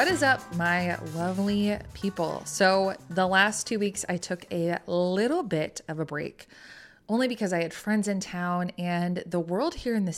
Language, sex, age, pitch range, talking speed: English, female, 20-39, 160-190 Hz, 190 wpm